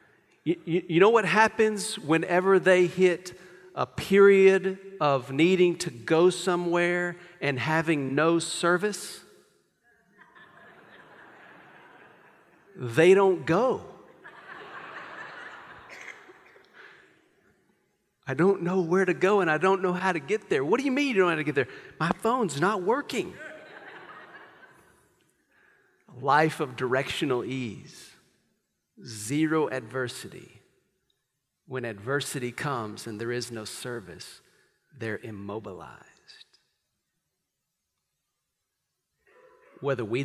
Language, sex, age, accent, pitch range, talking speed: English, male, 40-59, American, 130-180 Hz, 105 wpm